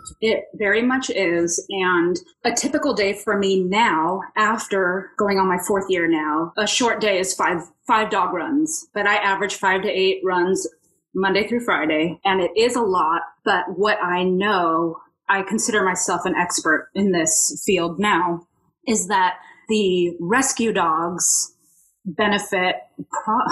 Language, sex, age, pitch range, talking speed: English, female, 30-49, 175-215 Hz, 155 wpm